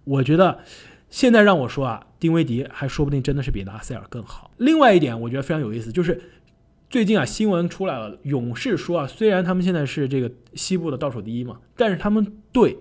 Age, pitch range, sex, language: 20-39, 120-175 Hz, male, Chinese